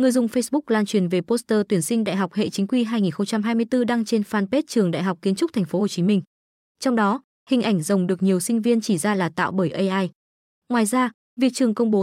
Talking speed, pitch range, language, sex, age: 245 wpm, 195-245 Hz, Vietnamese, female, 20-39